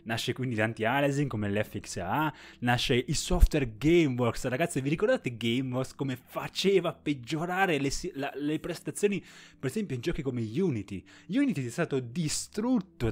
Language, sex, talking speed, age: Italian, male, 140 wpm, 20-39